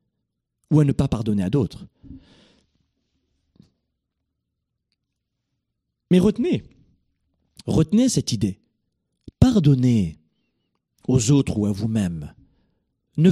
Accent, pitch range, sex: French, 105-145 Hz, male